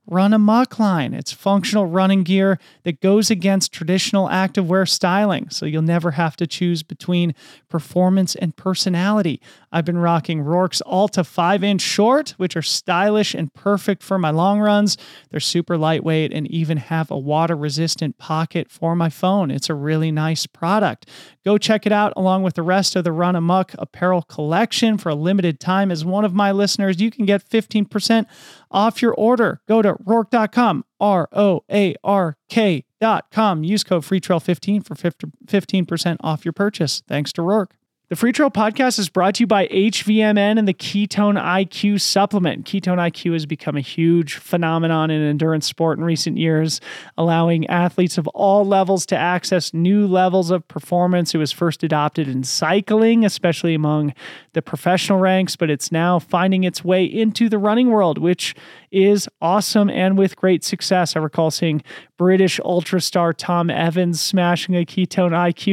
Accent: American